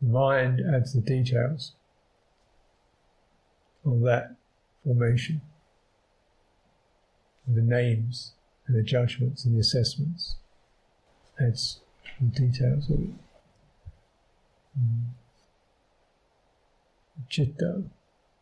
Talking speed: 70 wpm